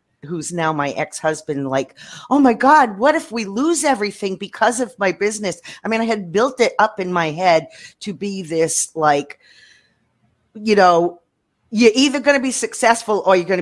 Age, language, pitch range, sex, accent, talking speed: 40-59, English, 140-210 Hz, female, American, 185 wpm